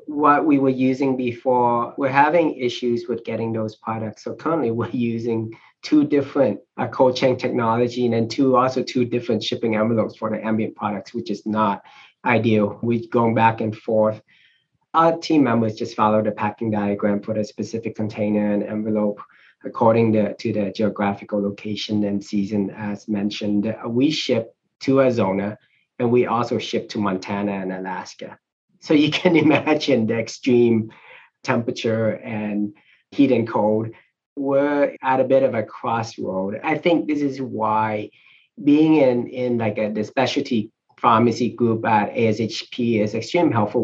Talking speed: 160 wpm